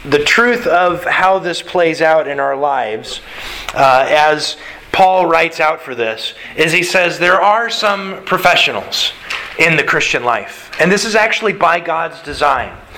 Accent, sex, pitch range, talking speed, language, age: American, male, 155-205 Hz, 160 wpm, English, 30-49